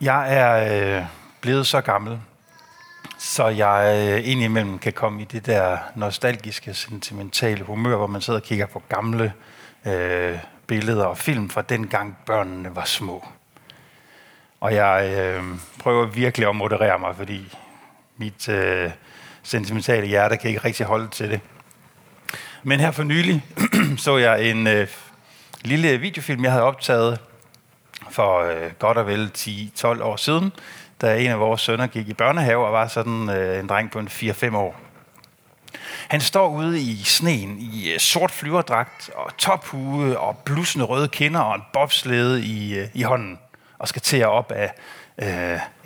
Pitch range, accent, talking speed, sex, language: 105-135 Hz, native, 150 wpm, male, Danish